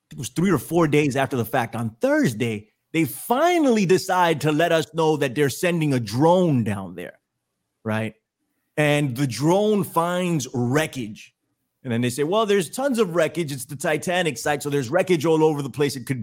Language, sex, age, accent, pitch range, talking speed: English, male, 30-49, American, 120-175 Hz, 195 wpm